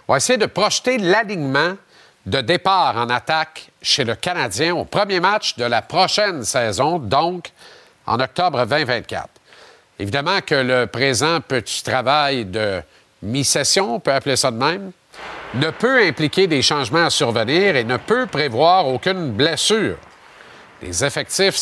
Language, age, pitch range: French, 50-69, 125-175 Hz